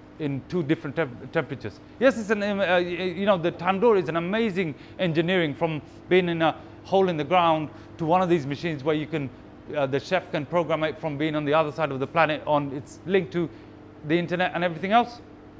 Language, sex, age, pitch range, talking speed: English, male, 30-49, 140-170 Hz, 220 wpm